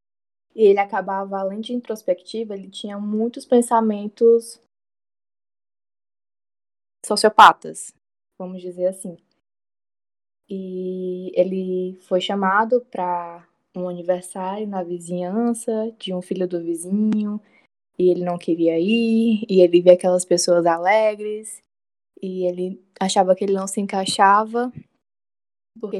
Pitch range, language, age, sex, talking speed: 180-225 Hz, Portuguese, 10-29, female, 110 wpm